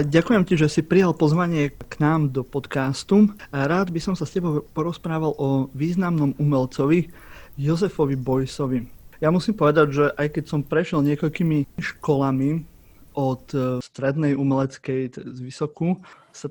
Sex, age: male, 30-49